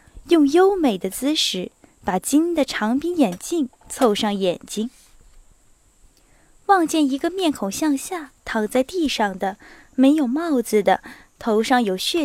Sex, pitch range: female, 220-305 Hz